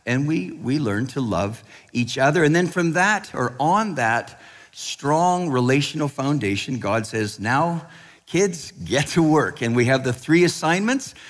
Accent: American